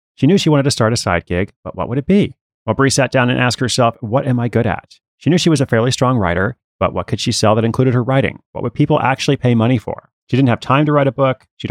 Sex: male